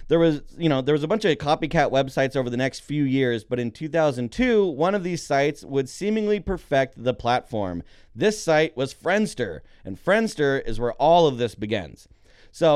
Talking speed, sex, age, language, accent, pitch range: 195 wpm, male, 30-49, English, American, 125-170 Hz